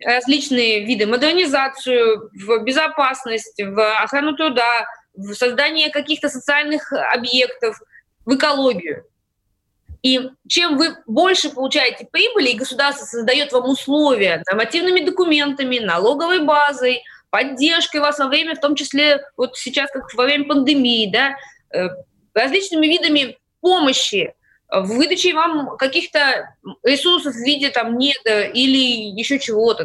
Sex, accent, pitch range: female, native, 245-310 Hz